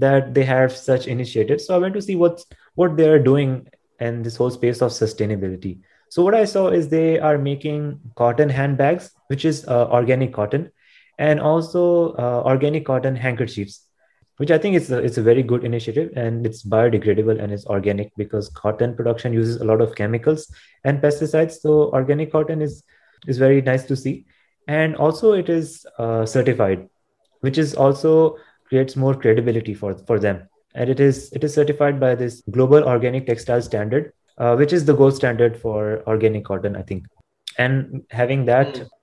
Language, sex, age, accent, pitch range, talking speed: English, male, 20-39, Indian, 115-150 Hz, 175 wpm